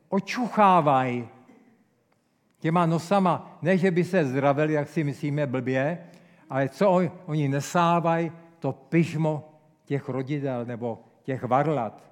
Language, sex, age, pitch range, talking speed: Czech, male, 50-69, 150-190 Hz, 115 wpm